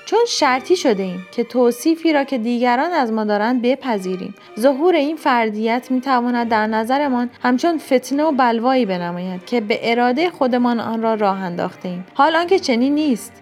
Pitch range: 220-285 Hz